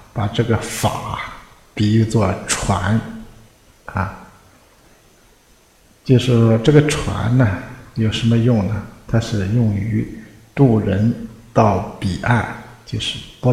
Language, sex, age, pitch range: Chinese, male, 60-79, 105-130 Hz